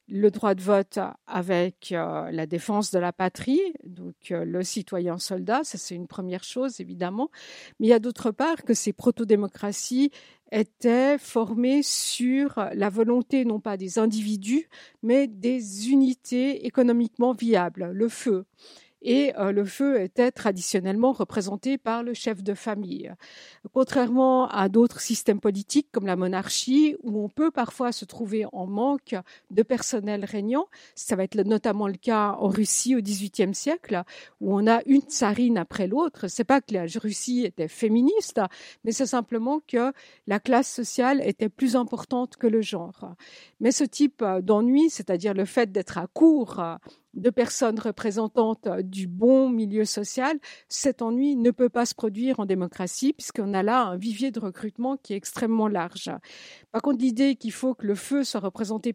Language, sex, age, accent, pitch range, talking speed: French, female, 50-69, French, 205-255 Hz, 165 wpm